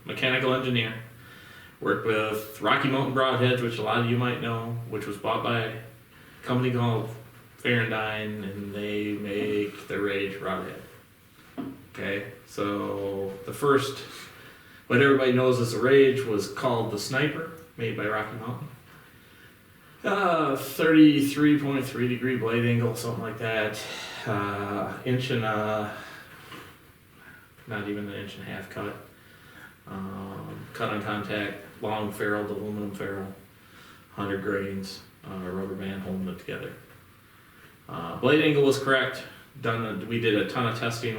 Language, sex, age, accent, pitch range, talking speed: English, male, 20-39, American, 100-125 Hz, 140 wpm